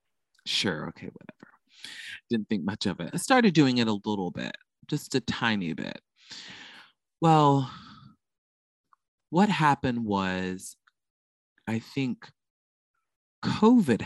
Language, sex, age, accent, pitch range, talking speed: English, male, 20-39, American, 100-135 Hz, 110 wpm